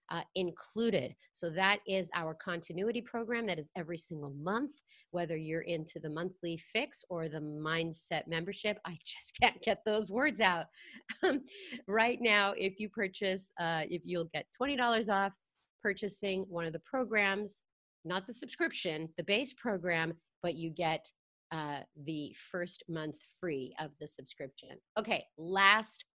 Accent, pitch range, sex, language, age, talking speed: American, 165-205 Hz, female, English, 30-49, 150 wpm